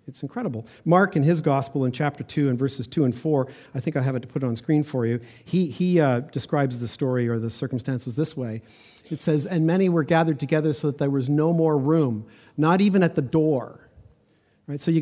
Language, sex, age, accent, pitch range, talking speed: English, male, 50-69, American, 125-165 Hz, 230 wpm